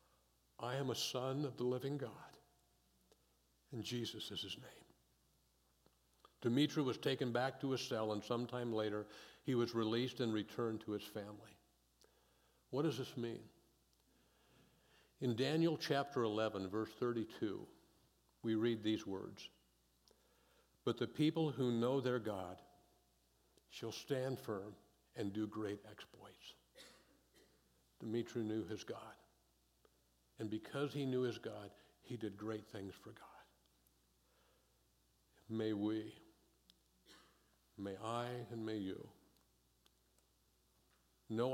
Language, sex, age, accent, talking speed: English, male, 60-79, American, 120 wpm